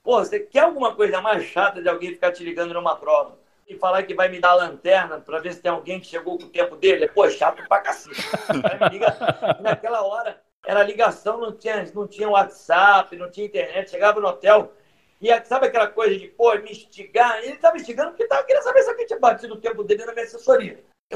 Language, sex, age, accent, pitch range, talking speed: Portuguese, male, 60-79, Brazilian, 190-270 Hz, 225 wpm